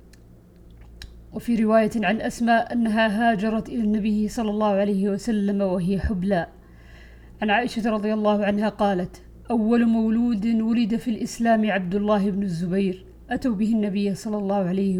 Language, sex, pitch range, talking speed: Arabic, female, 195-230 Hz, 140 wpm